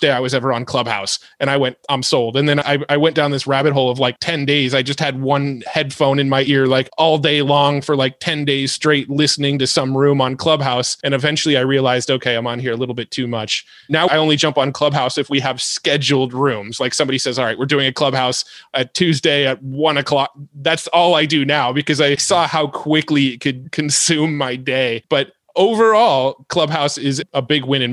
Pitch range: 130-150 Hz